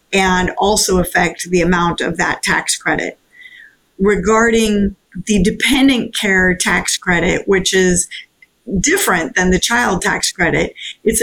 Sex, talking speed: female, 130 wpm